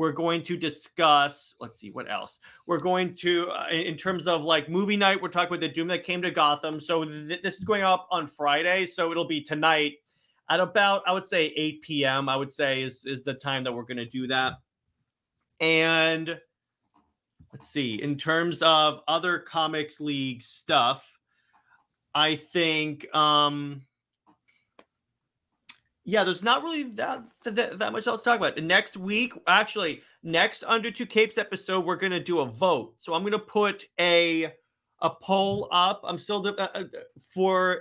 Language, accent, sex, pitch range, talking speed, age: English, American, male, 150-185 Hz, 170 wpm, 30-49